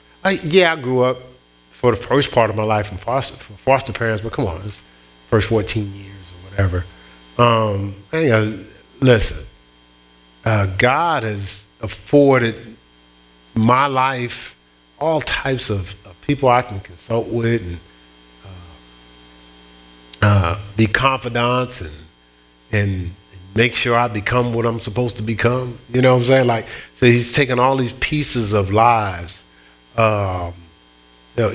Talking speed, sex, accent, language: 145 wpm, male, American, English